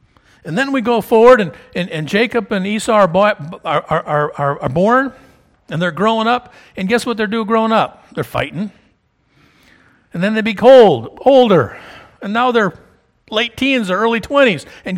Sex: male